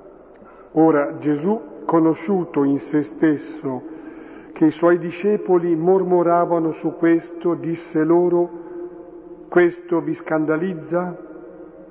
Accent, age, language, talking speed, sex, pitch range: native, 50-69, Italian, 90 wpm, male, 155-180 Hz